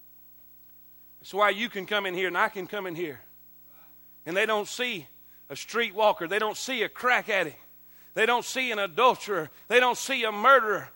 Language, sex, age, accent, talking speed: English, male, 40-59, American, 190 wpm